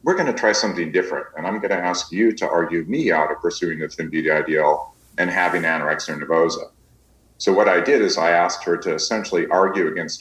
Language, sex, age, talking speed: English, male, 40-59, 225 wpm